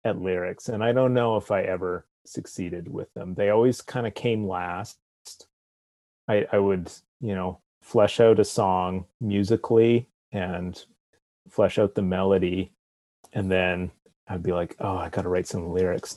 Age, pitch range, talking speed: 30-49, 90-105 Hz, 165 wpm